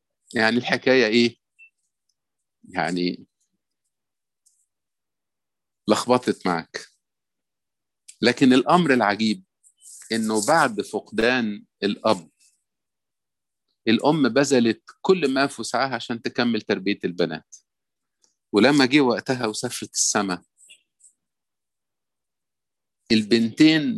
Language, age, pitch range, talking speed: Arabic, 50-69, 100-125 Hz, 70 wpm